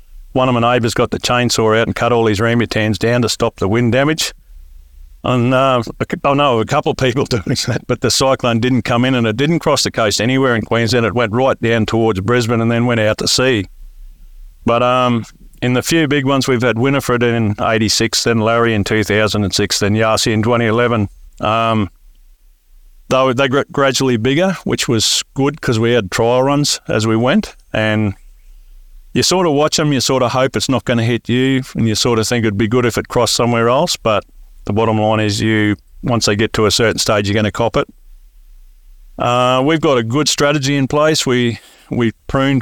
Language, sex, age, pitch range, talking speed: English, male, 50-69, 105-125 Hz, 215 wpm